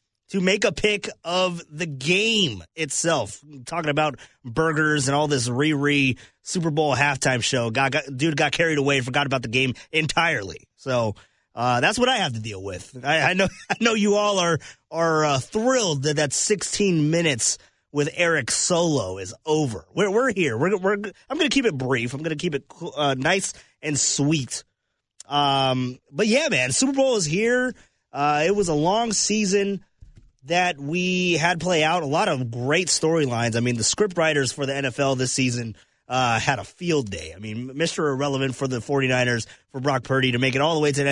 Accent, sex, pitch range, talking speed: American, male, 125-175 Hz, 205 wpm